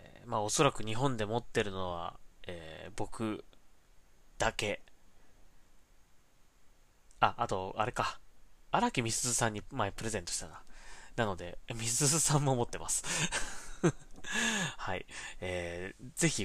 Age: 20-39